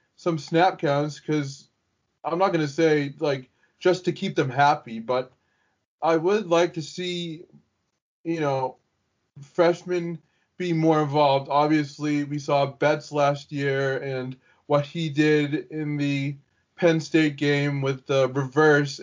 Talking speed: 140 wpm